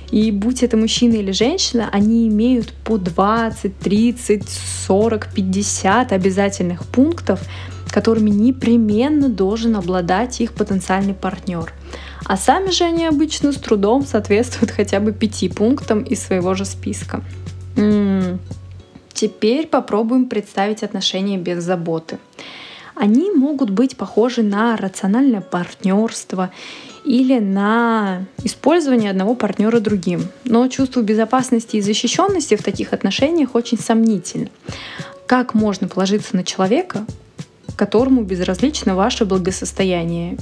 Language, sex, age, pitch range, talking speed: Russian, female, 20-39, 190-235 Hz, 115 wpm